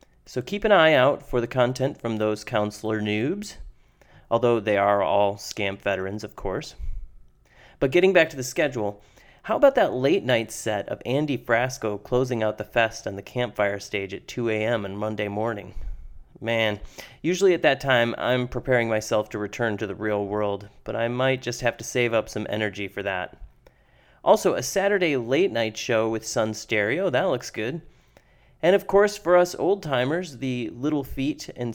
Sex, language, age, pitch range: male, English, 30-49, 105-135 Hz